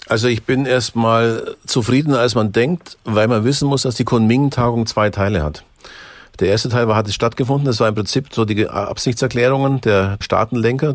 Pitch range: 95-115 Hz